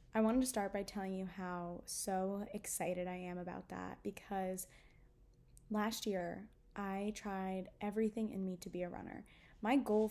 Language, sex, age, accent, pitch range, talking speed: English, female, 10-29, American, 195-225 Hz, 165 wpm